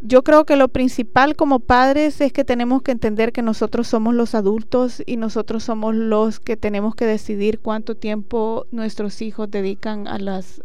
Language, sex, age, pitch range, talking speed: Spanish, female, 30-49, 205-250 Hz, 180 wpm